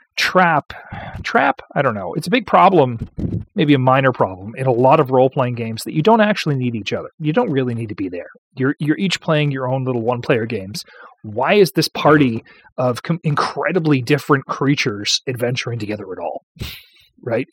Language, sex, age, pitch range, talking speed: English, male, 30-49, 125-155 Hz, 200 wpm